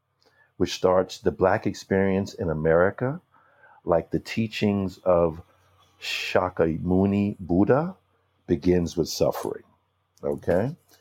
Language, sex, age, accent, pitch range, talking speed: English, male, 60-79, American, 85-115 Hz, 95 wpm